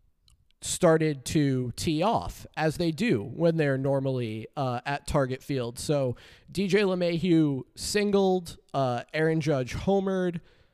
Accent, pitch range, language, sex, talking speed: American, 130-165 Hz, English, male, 125 wpm